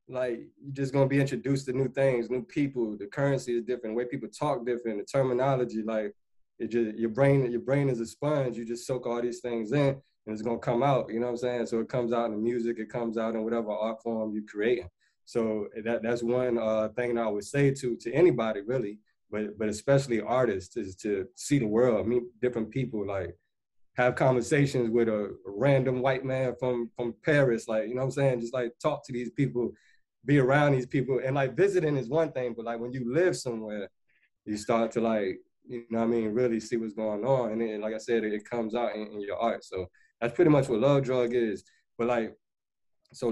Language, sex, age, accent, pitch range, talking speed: English, male, 20-39, American, 110-130 Hz, 230 wpm